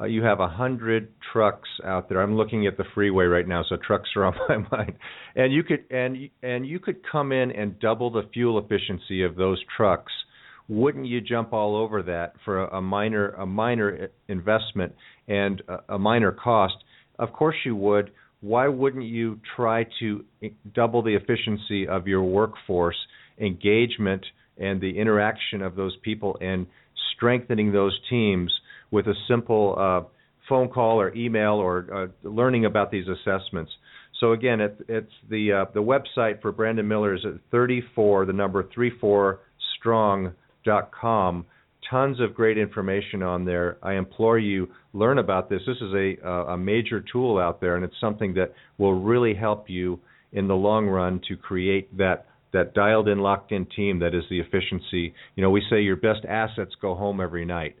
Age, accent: 50-69, American